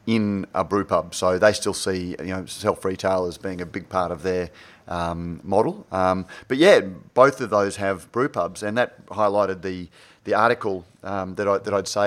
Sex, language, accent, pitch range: male, English, Australian, 95-110 Hz